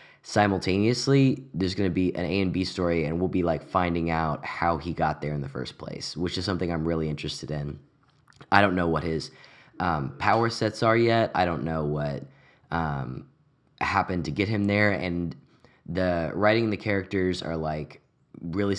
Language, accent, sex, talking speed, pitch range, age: English, American, male, 190 wpm, 80-105 Hz, 10-29